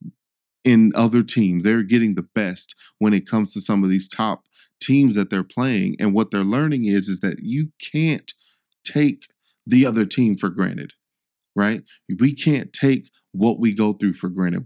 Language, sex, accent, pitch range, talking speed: English, male, American, 95-120 Hz, 180 wpm